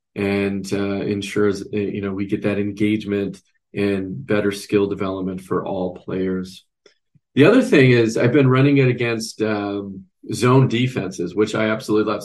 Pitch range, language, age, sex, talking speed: 100-110 Hz, English, 40-59, male, 155 wpm